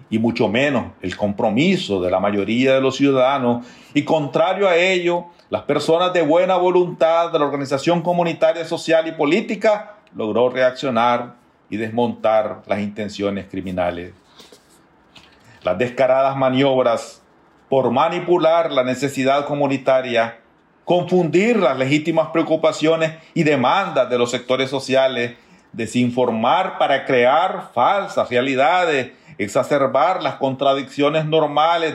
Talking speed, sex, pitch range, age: 115 wpm, male, 120-165 Hz, 40-59